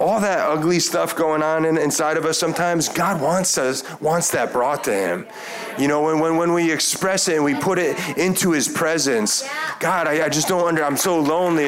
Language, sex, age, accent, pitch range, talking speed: English, male, 30-49, American, 145-185 Hz, 220 wpm